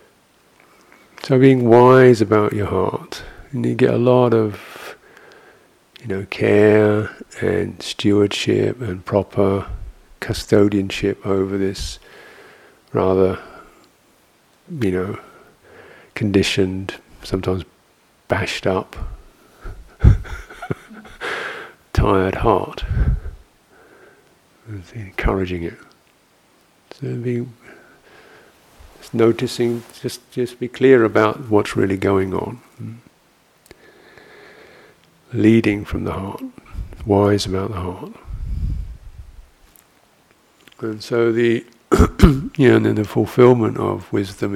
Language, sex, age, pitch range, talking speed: English, male, 50-69, 95-125 Hz, 90 wpm